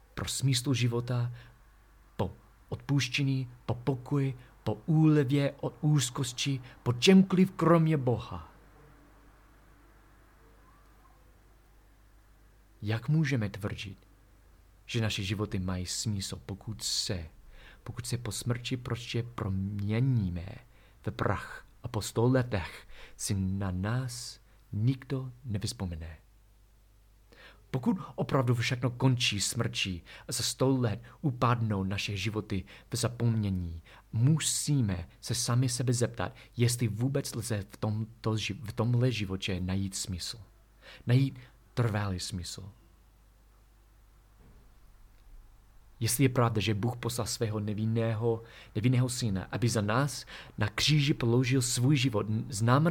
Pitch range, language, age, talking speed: 105-125 Hz, Czech, 40-59, 105 wpm